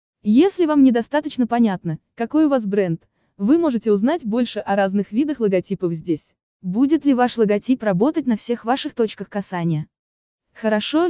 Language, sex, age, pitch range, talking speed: Russian, female, 20-39, 185-245 Hz, 150 wpm